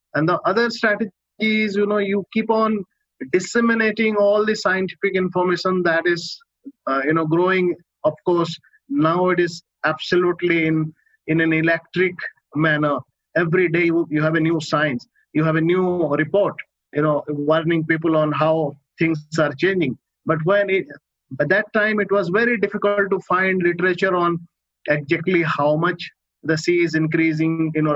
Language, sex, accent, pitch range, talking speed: English, male, Indian, 155-195 Hz, 160 wpm